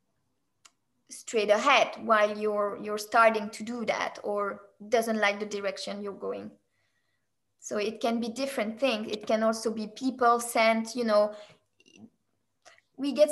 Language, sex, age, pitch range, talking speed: English, female, 20-39, 210-240 Hz, 145 wpm